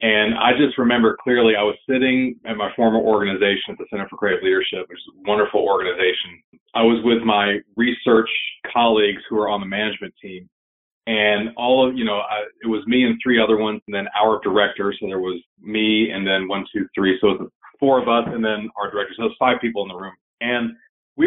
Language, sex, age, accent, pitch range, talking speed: English, male, 30-49, American, 105-130 Hz, 230 wpm